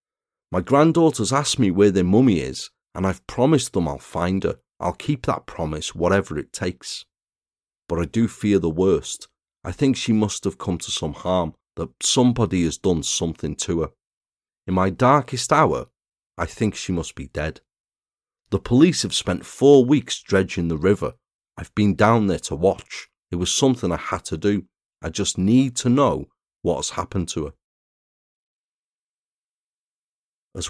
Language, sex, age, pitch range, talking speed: English, male, 30-49, 90-125 Hz, 170 wpm